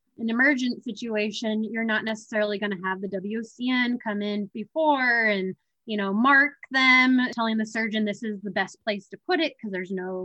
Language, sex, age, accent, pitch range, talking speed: English, female, 20-39, American, 200-225 Hz, 195 wpm